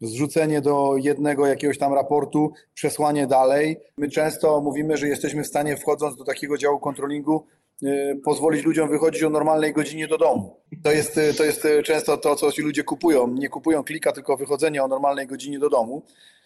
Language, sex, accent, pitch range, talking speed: Polish, male, native, 135-165 Hz, 170 wpm